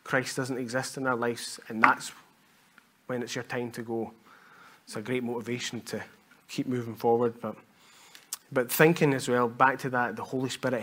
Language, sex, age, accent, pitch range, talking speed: English, male, 20-39, British, 125-150 Hz, 185 wpm